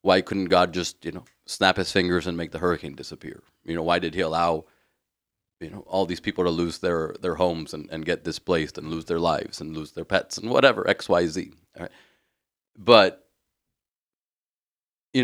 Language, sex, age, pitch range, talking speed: English, male, 40-59, 85-105 Hz, 200 wpm